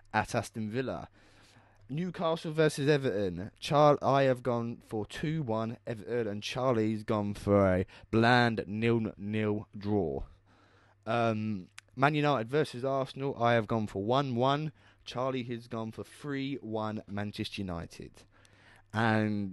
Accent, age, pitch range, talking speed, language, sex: British, 20-39, 100-130 Hz, 115 wpm, English, male